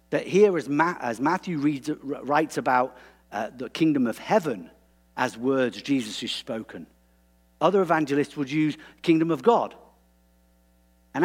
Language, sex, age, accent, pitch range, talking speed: English, male, 50-69, British, 100-160 Hz, 130 wpm